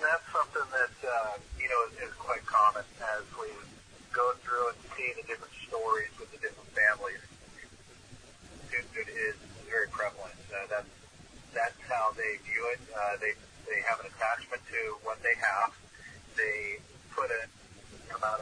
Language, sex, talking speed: English, male, 160 wpm